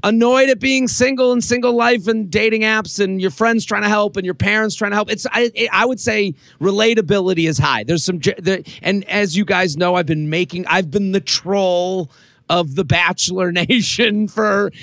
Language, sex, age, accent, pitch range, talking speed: English, male, 30-49, American, 160-205 Hz, 205 wpm